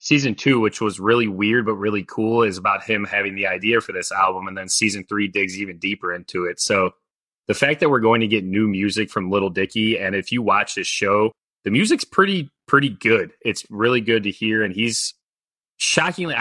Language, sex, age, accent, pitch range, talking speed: English, male, 20-39, American, 95-115 Hz, 215 wpm